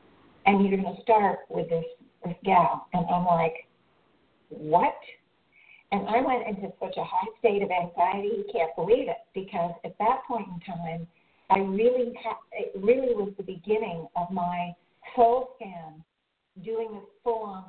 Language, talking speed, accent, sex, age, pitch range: English, 165 wpm, American, female, 50-69, 185-245 Hz